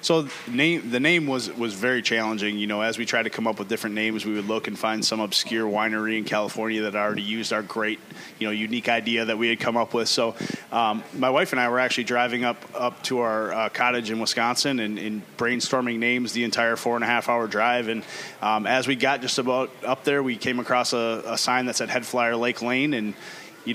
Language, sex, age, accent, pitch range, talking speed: English, male, 20-39, American, 110-125 Hz, 235 wpm